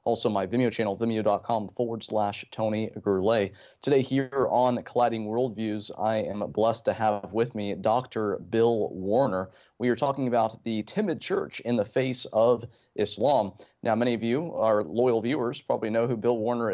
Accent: American